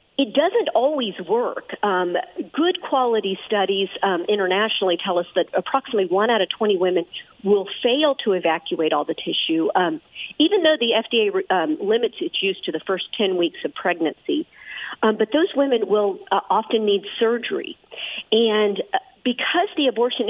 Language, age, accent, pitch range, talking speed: English, 50-69, American, 185-260 Hz, 165 wpm